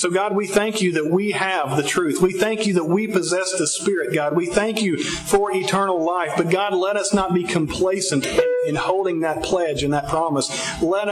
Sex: male